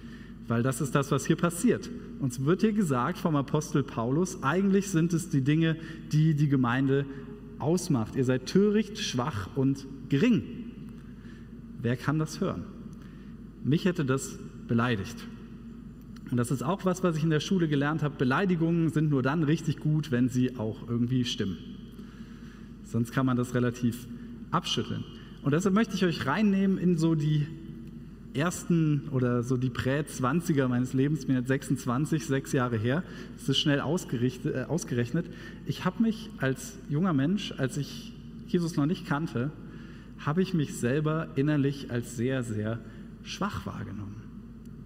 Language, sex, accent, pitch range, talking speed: German, male, German, 125-170 Hz, 155 wpm